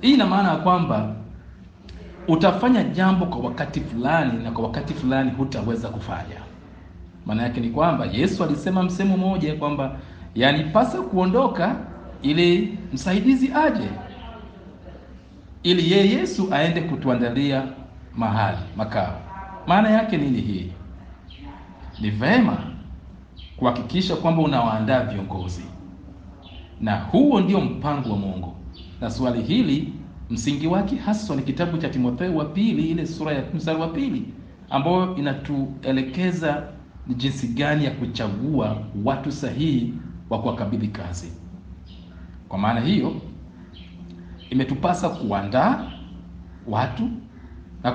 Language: Swahili